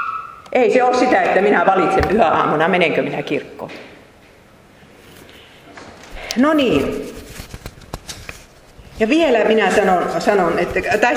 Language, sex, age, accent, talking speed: Finnish, female, 40-59, native, 105 wpm